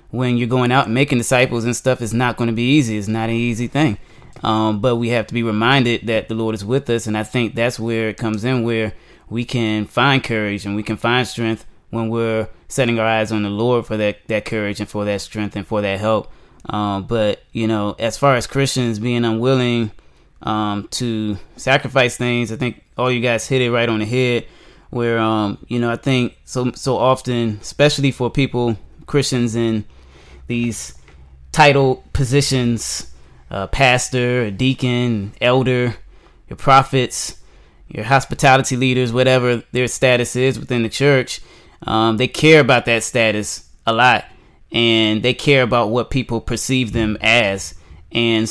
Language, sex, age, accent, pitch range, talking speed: English, male, 20-39, American, 110-125 Hz, 180 wpm